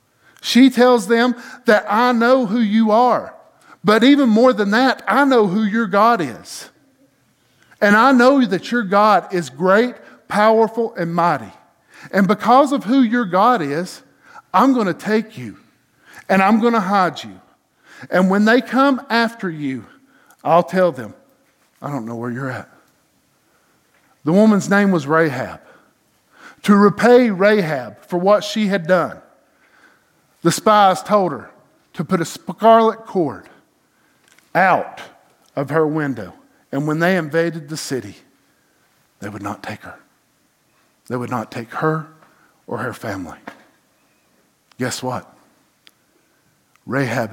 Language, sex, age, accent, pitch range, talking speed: English, male, 50-69, American, 145-230 Hz, 140 wpm